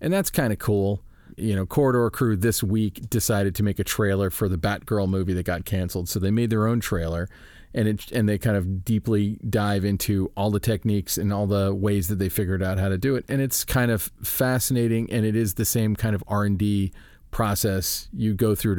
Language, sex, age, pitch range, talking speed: English, male, 40-59, 95-110 Hz, 225 wpm